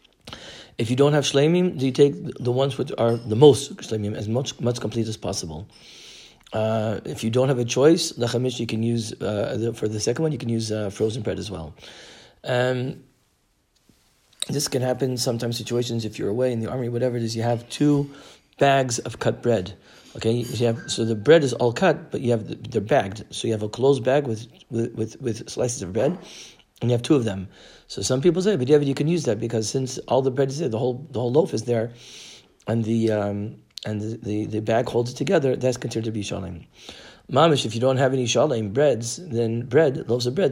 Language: English